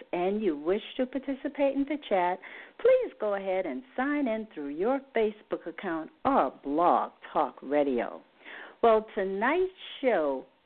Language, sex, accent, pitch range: English, female, American, 180-295 Hz